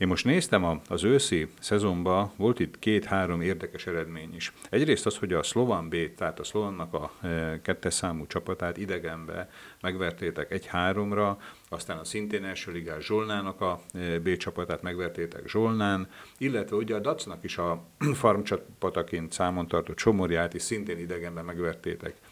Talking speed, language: 145 wpm, Hungarian